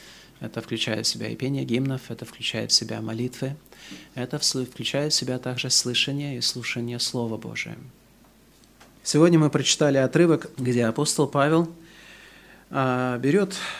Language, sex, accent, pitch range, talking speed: Russian, male, native, 120-150 Hz, 130 wpm